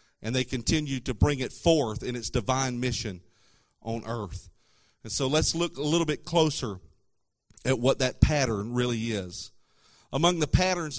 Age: 40-59